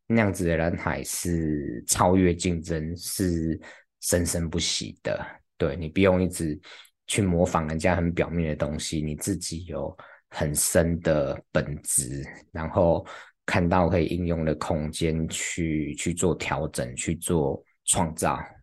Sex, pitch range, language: male, 80-95 Hz, Chinese